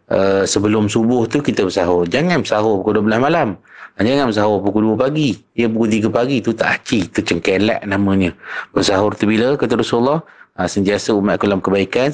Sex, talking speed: male, 185 wpm